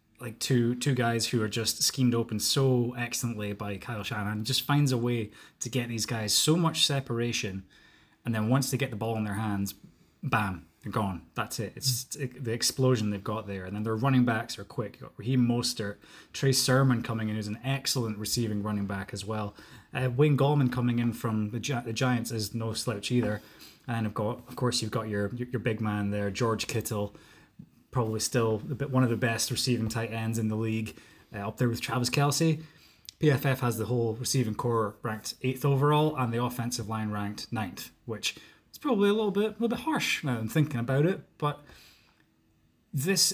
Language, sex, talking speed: English, male, 210 wpm